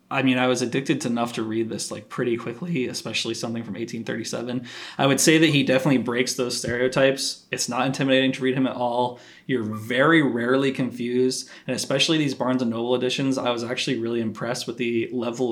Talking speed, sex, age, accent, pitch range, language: 205 wpm, male, 20-39, American, 120-140 Hz, English